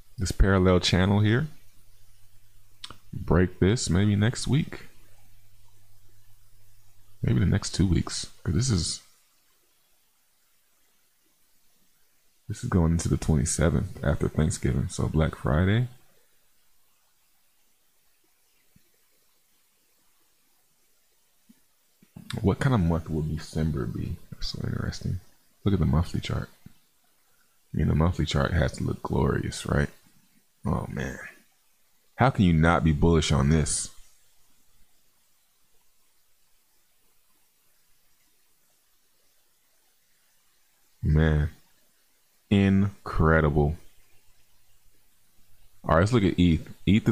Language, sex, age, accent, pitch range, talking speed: English, male, 20-39, American, 80-100 Hz, 90 wpm